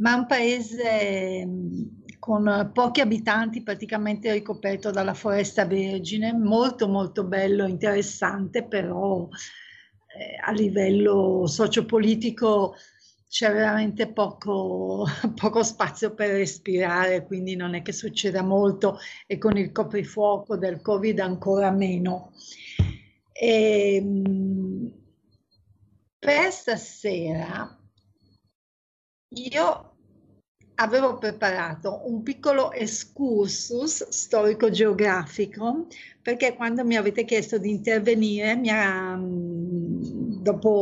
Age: 50-69